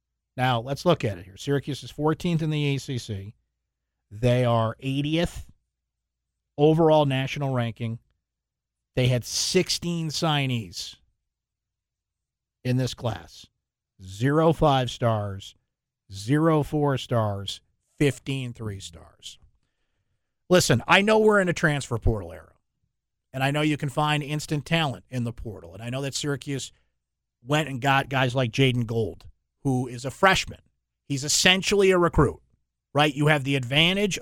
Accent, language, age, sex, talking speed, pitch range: American, English, 50-69, male, 135 wpm, 115-155 Hz